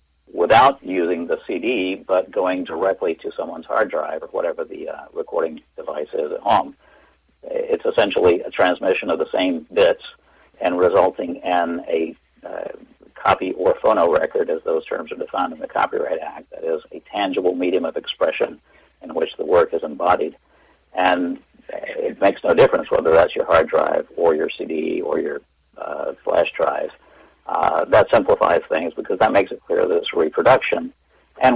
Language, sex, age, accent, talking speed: English, male, 60-79, American, 170 wpm